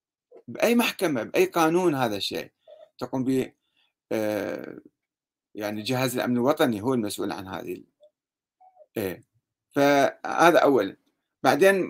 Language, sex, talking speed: Arabic, male, 105 wpm